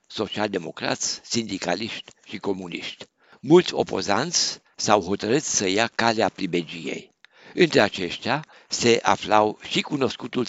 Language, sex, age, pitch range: Romanian, male, 60-79, 100-125 Hz